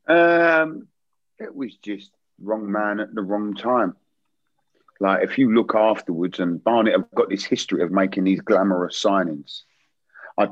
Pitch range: 95-115 Hz